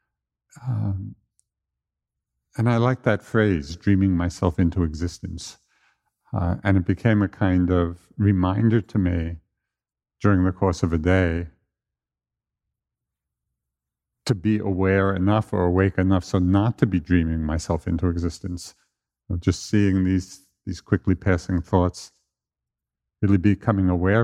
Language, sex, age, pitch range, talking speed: English, male, 50-69, 85-105 Hz, 125 wpm